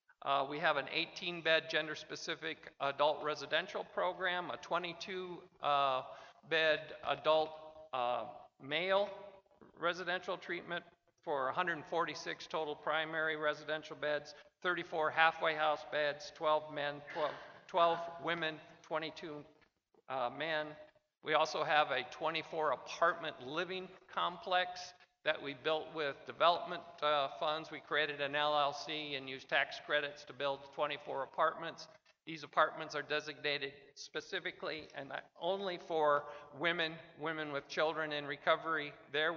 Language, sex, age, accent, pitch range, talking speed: English, male, 50-69, American, 145-170 Hz, 115 wpm